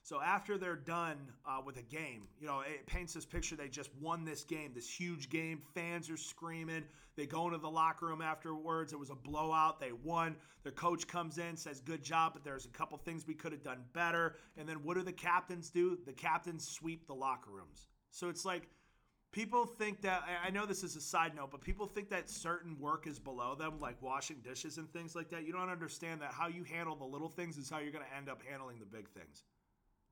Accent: American